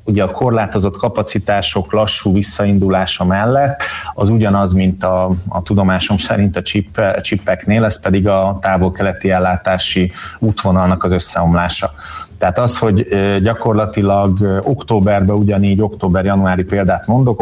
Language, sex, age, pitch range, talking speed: Hungarian, male, 30-49, 95-105 Hz, 115 wpm